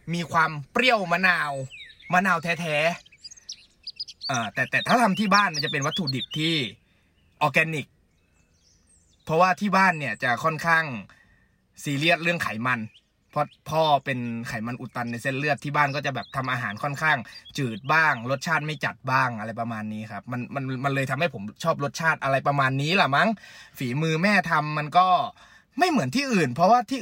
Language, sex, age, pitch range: Thai, male, 20-39, 135-205 Hz